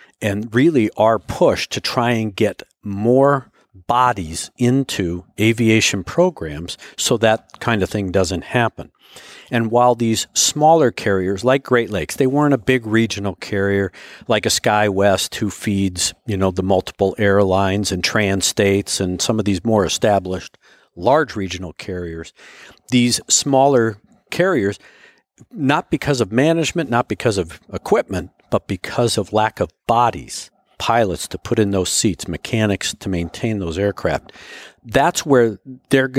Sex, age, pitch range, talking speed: male, 50-69, 100-125 Hz, 145 wpm